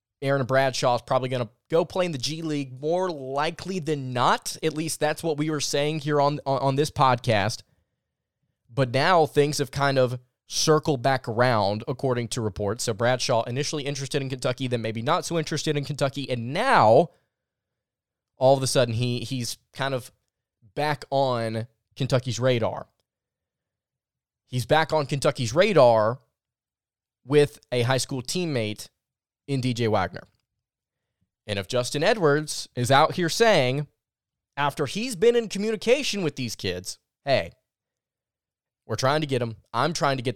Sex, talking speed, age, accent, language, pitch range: male, 160 wpm, 20-39, American, English, 115-150 Hz